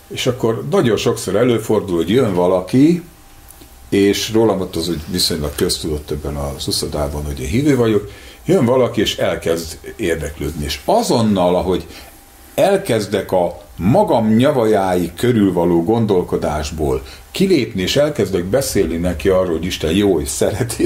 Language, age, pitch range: English, 60-79, 80-115 Hz